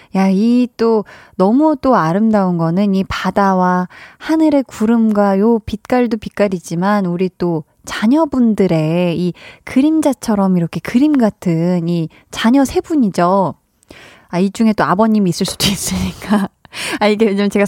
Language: Korean